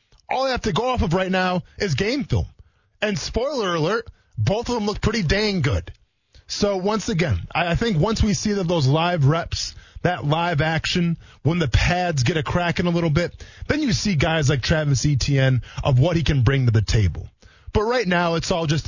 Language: English